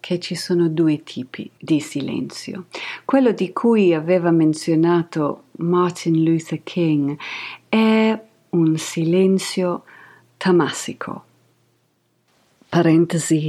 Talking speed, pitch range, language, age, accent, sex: 90 wpm, 145-175 Hz, Italian, 50-69, native, female